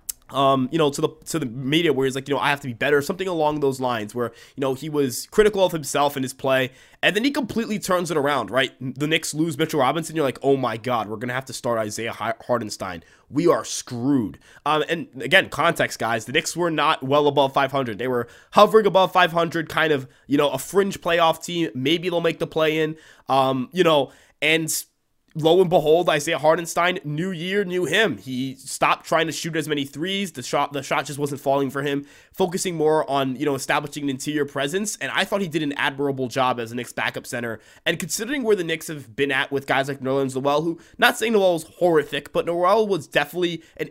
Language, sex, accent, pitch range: English, male, American, 135-170 Hz